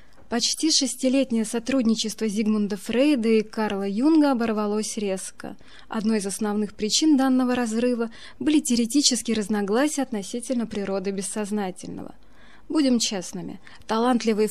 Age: 20-39